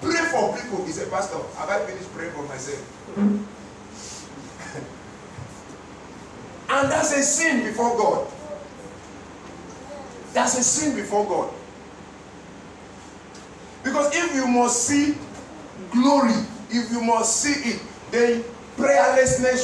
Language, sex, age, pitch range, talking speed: English, male, 40-59, 205-270 Hz, 110 wpm